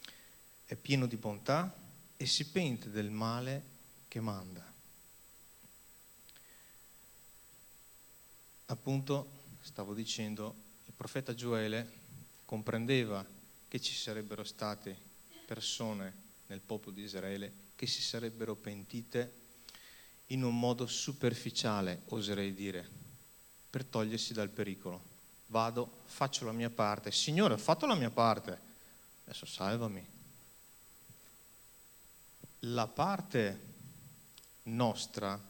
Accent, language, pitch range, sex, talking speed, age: native, Italian, 105-125 Hz, male, 95 wpm, 30-49